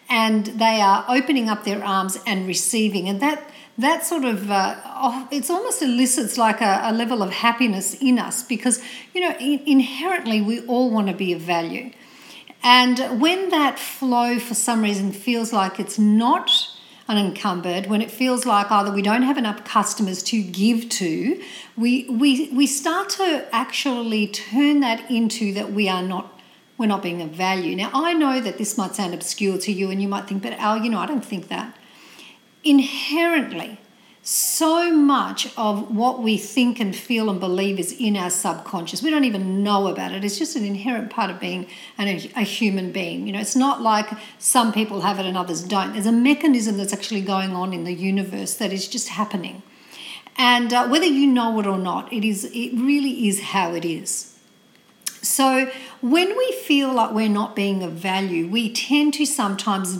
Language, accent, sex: English, Australian, female